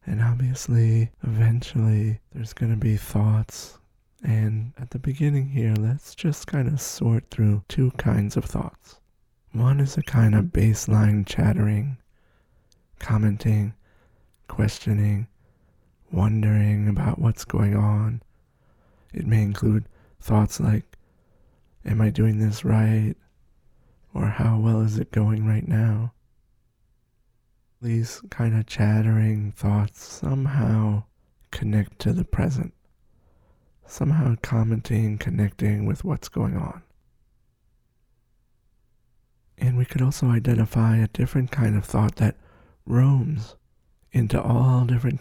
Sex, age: male, 20-39